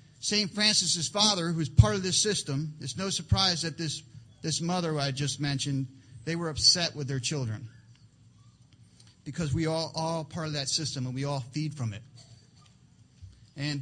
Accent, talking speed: American, 180 wpm